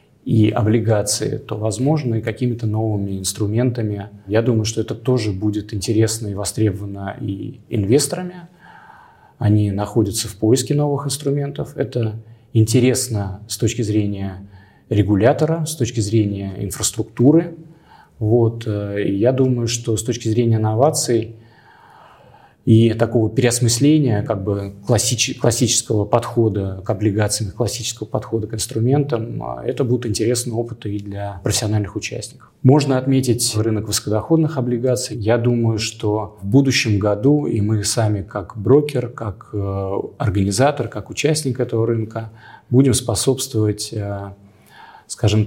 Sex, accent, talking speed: male, native, 120 wpm